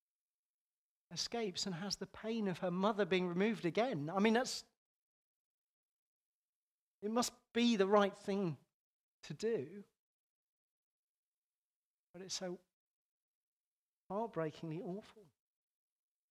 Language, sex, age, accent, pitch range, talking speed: English, male, 40-59, British, 160-200 Hz, 100 wpm